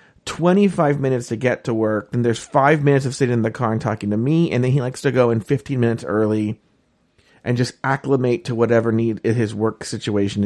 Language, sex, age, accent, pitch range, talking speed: English, male, 40-59, American, 110-140 Hz, 220 wpm